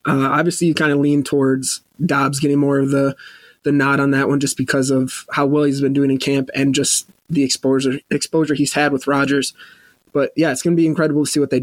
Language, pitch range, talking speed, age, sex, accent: English, 135-155 Hz, 245 wpm, 20-39, male, American